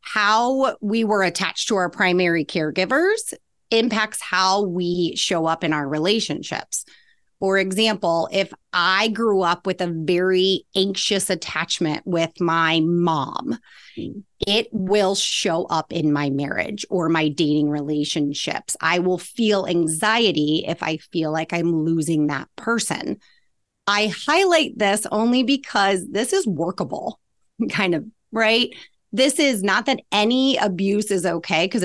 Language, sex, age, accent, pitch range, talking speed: English, female, 30-49, American, 165-220 Hz, 140 wpm